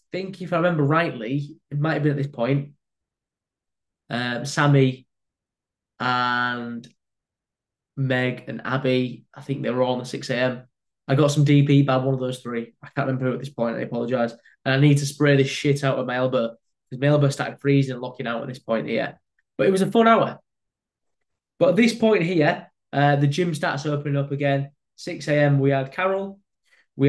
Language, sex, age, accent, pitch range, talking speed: English, male, 10-29, British, 130-150 Hz, 205 wpm